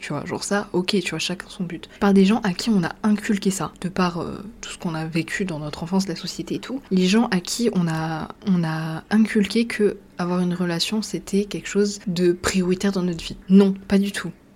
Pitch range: 170-205 Hz